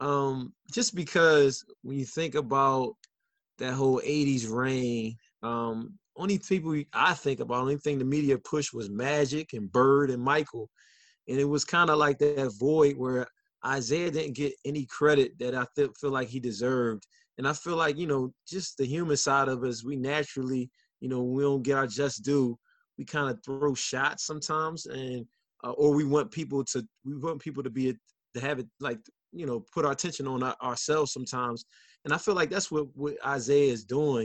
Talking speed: 195 wpm